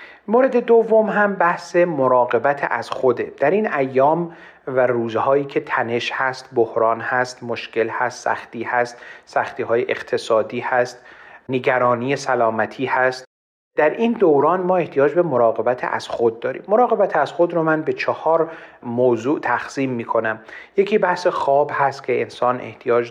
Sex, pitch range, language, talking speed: male, 120-150 Hz, Persian, 145 wpm